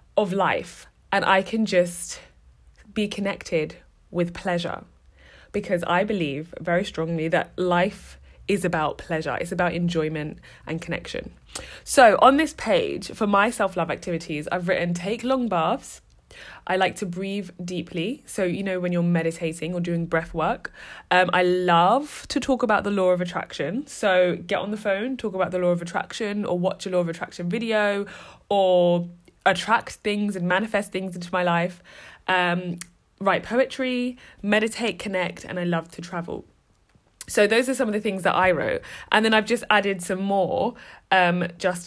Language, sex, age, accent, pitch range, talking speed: English, female, 20-39, British, 175-220 Hz, 170 wpm